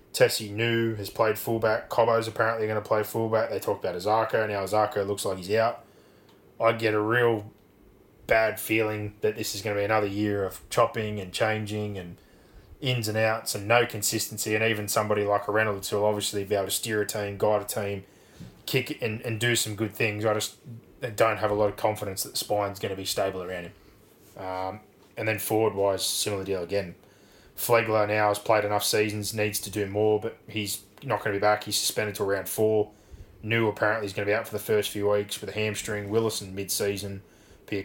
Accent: Australian